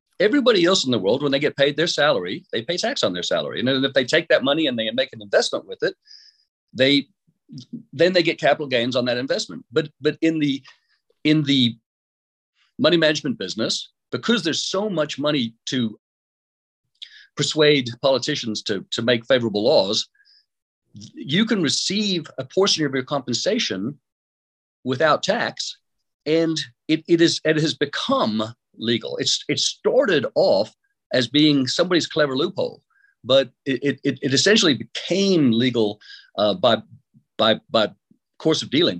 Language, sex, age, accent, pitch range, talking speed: English, male, 50-69, American, 125-175 Hz, 155 wpm